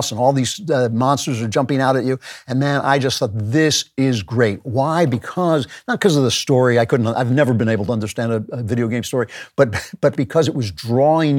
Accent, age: American, 50-69